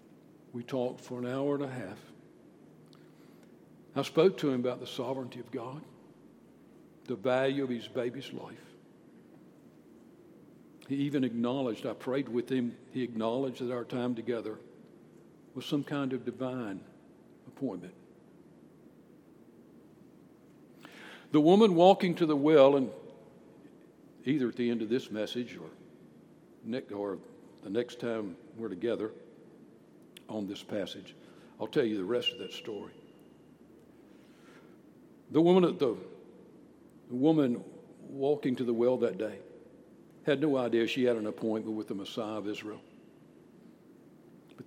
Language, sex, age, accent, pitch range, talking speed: English, male, 60-79, American, 120-145 Hz, 130 wpm